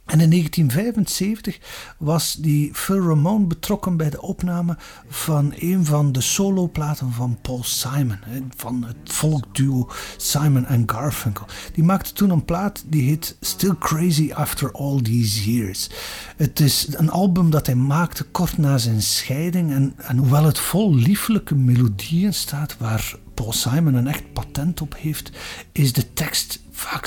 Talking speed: 150 wpm